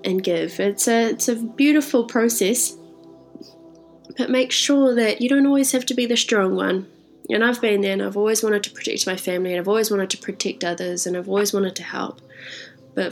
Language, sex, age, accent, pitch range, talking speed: English, female, 20-39, Australian, 185-240 Hz, 215 wpm